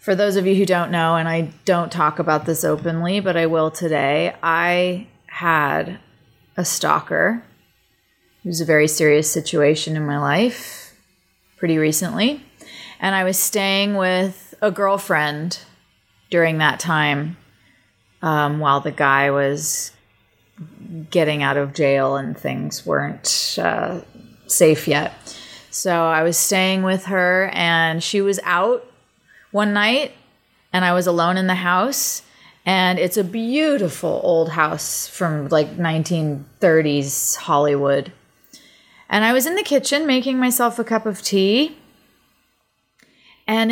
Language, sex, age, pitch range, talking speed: English, female, 30-49, 155-210 Hz, 135 wpm